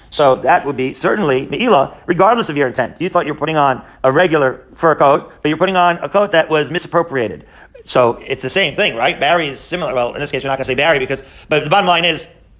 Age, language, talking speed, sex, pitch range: 40-59, English, 255 wpm, male, 140-180 Hz